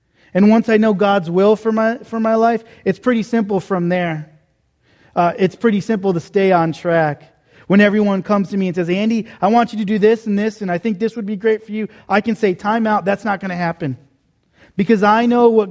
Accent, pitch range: American, 165-205 Hz